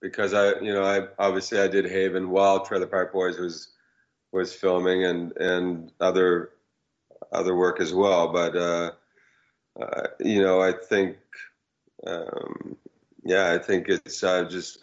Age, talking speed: 30-49, 150 wpm